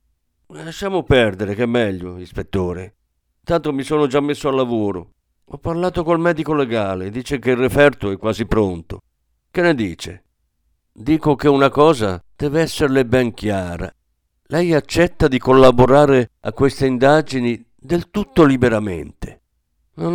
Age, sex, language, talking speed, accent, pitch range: 50-69, male, Italian, 140 wpm, native, 90-140 Hz